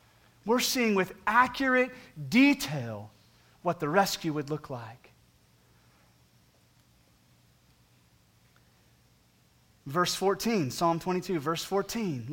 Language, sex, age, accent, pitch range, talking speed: English, male, 30-49, American, 160-235 Hz, 85 wpm